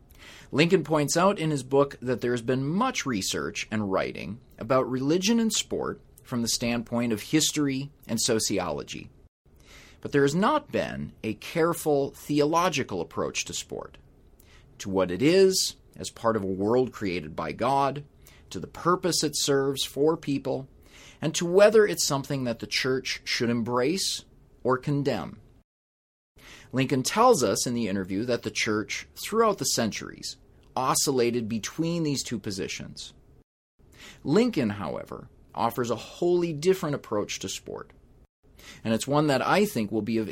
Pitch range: 110-155 Hz